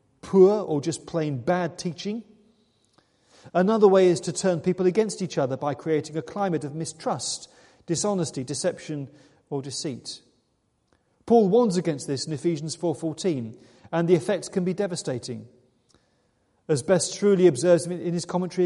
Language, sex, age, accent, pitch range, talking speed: English, male, 40-59, British, 150-200 Hz, 145 wpm